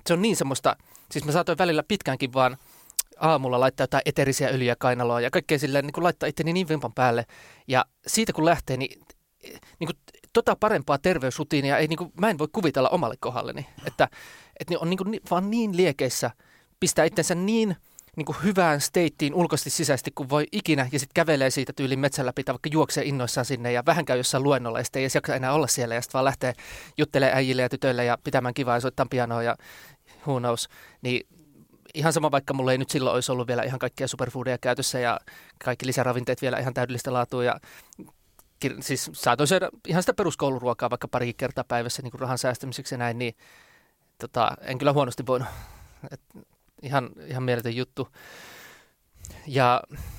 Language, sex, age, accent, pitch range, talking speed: Finnish, male, 30-49, native, 125-155 Hz, 175 wpm